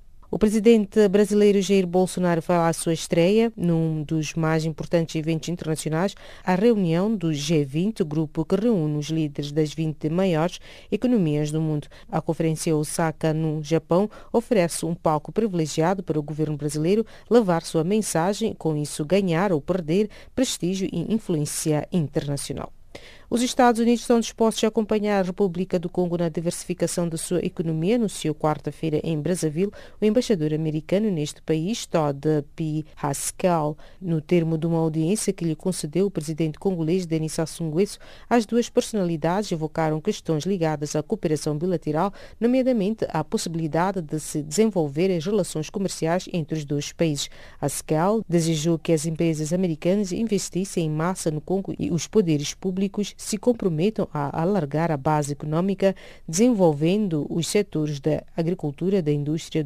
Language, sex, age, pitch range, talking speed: English, female, 40-59, 155-195 Hz, 150 wpm